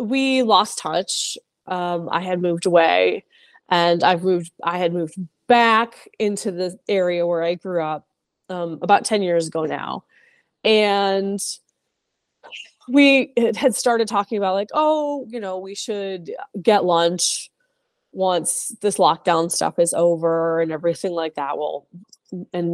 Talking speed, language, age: 145 wpm, English, 20-39